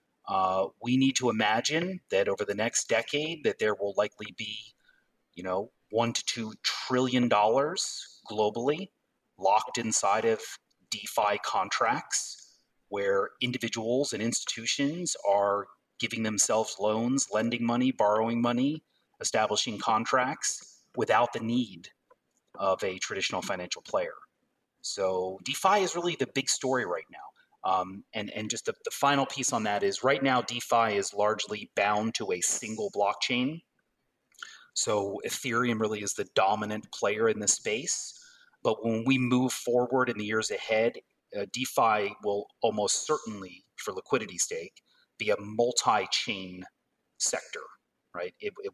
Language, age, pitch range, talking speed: English, 30-49, 110-170 Hz, 140 wpm